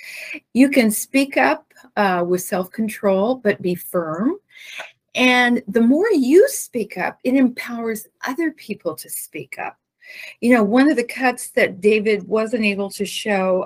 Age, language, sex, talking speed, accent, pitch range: 40-59, English, female, 155 wpm, American, 205-275 Hz